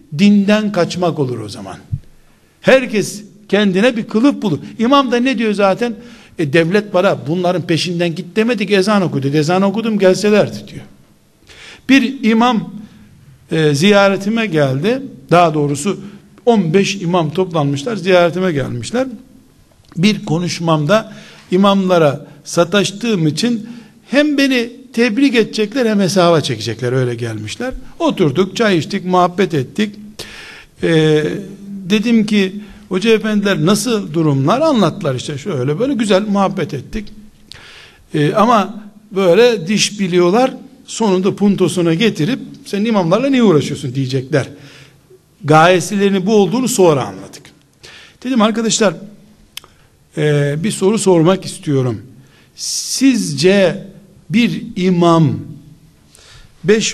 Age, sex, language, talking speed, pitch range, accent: 60-79, male, Turkish, 105 wpm, 155-215 Hz, native